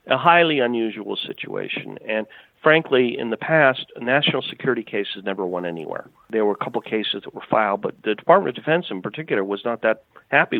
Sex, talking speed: male, 200 wpm